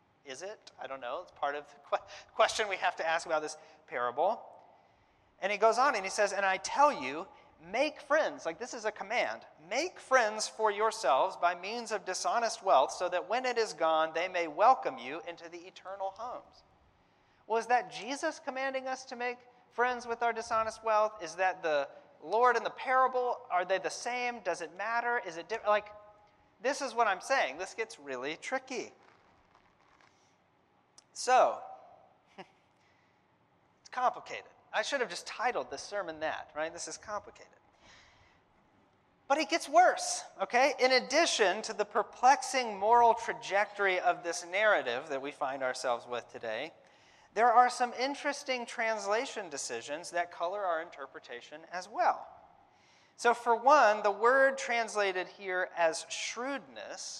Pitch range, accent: 175-245 Hz, American